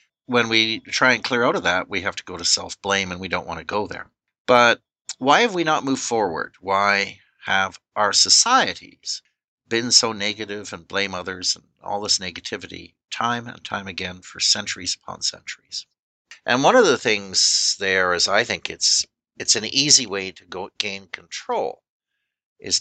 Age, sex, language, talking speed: 60-79, male, English, 180 wpm